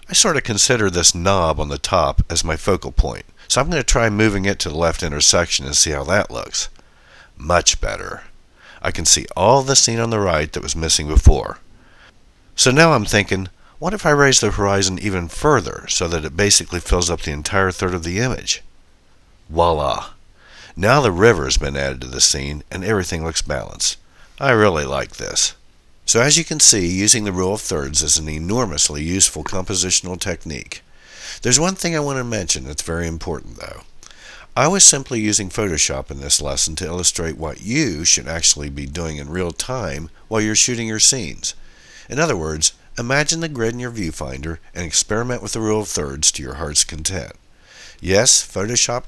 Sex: male